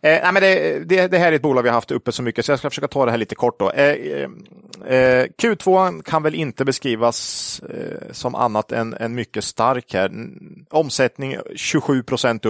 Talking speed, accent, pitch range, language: 175 wpm, Norwegian, 115-150 Hz, Swedish